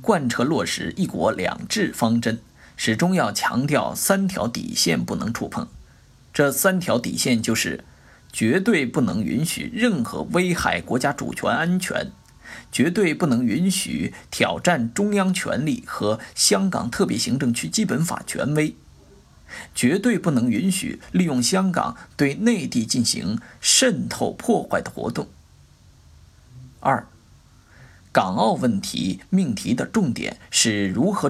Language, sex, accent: Chinese, male, native